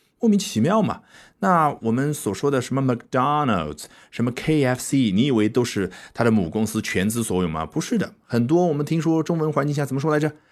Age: 30-49